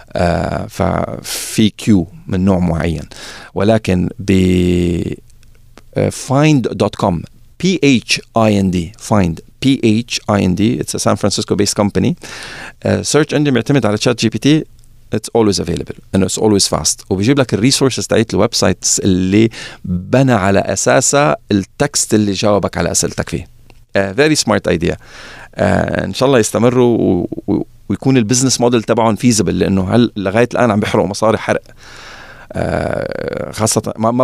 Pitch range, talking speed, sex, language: 100-120 Hz, 140 wpm, male, Arabic